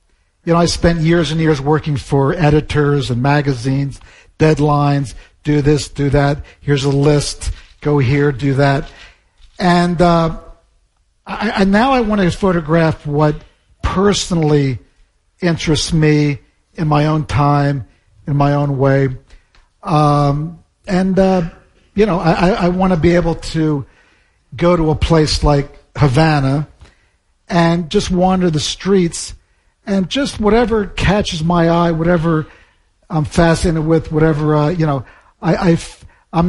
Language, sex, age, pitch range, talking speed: Spanish, male, 50-69, 140-165 Hz, 135 wpm